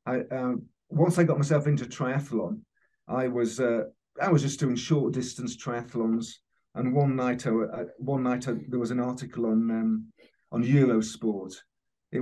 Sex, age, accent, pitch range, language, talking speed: male, 50-69, British, 120-155 Hz, English, 155 wpm